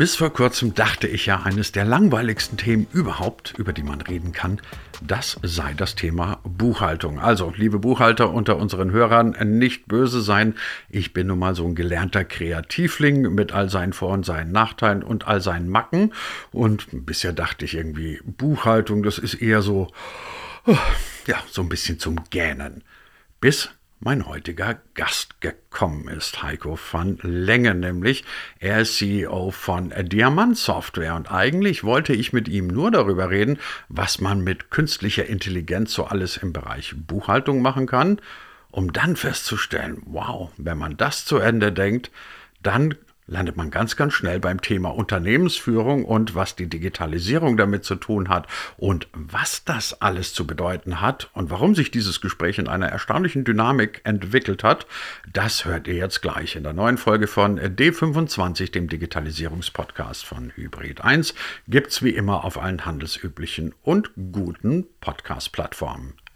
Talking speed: 155 wpm